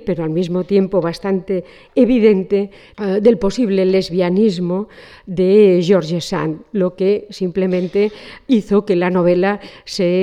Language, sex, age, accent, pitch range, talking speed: Spanish, female, 40-59, Spanish, 185-220 Hz, 125 wpm